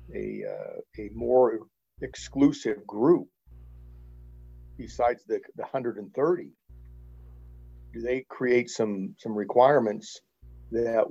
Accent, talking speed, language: American, 90 wpm, English